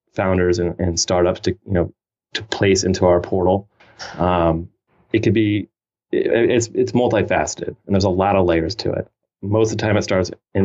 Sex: male